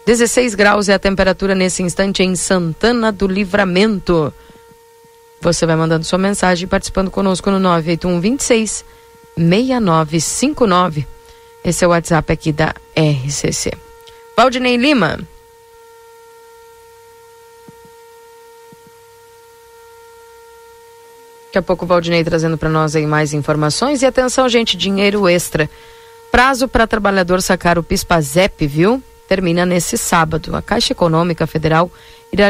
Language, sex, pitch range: Portuguese, female, 165-250 Hz